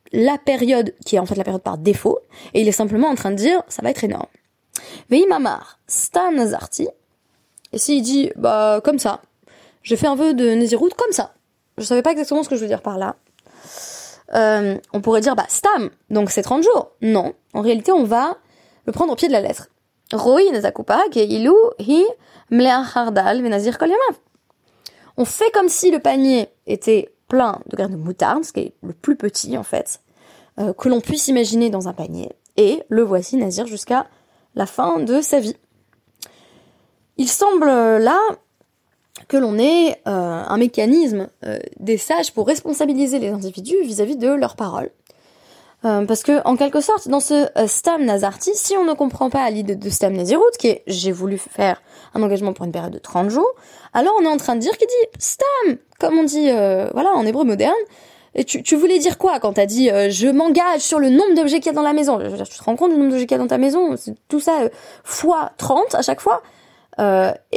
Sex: female